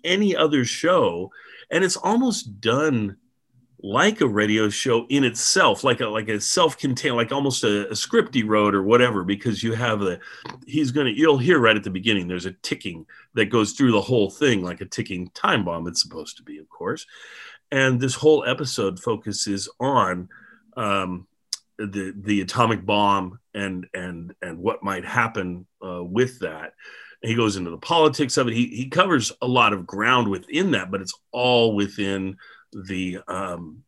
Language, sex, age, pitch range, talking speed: English, male, 40-59, 95-125 Hz, 175 wpm